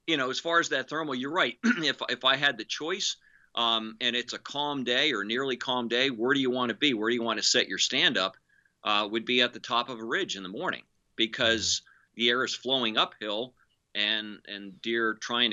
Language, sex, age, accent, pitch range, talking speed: English, male, 50-69, American, 105-130 Hz, 240 wpm